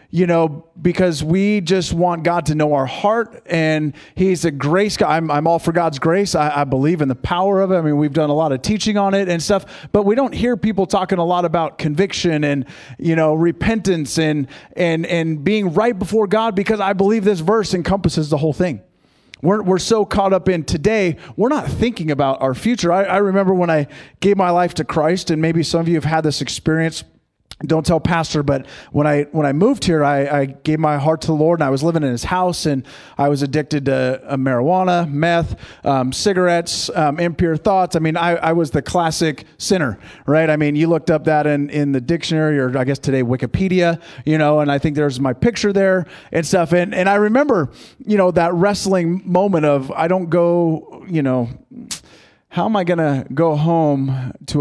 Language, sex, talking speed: English, male, 220 wpm